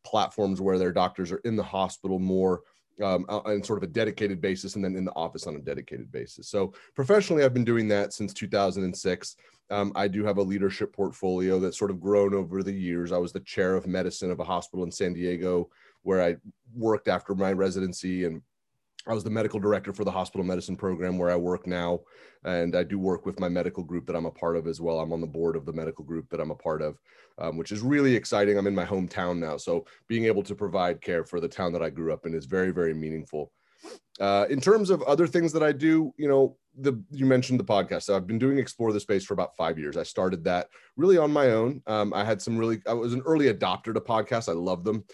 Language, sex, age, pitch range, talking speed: English, male, 30-49, 95-120 Hz, 245 wpm